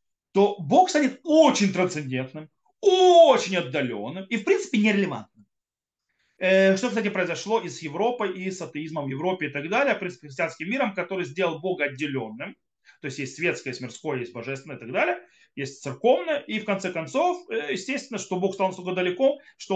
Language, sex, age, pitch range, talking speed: Russian, male, 30-49, 150-230 Hz, 170 wpm